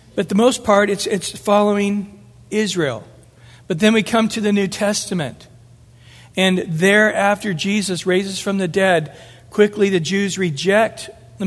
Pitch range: 160-205 Hz